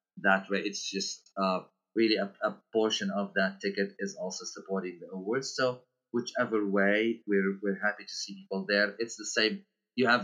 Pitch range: 95-115 Hz